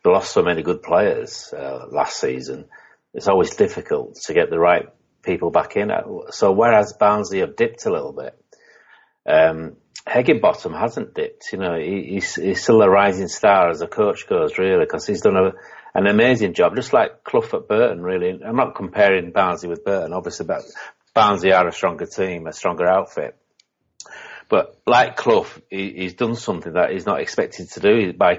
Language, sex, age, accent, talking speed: English, male, 40-59, British, 185 wpm